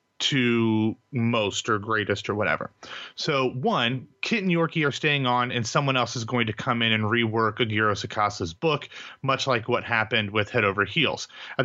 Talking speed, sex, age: 185 wpm, male, 30-49